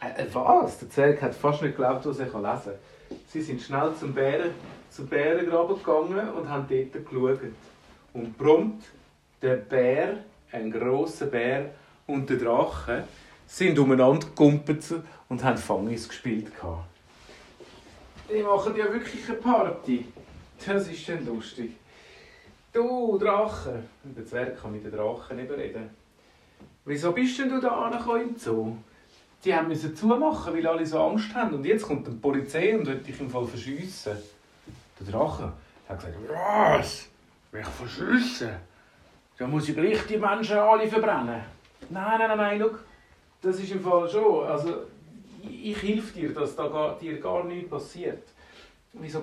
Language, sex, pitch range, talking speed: German, male, 130-215 Hz, 160 wpm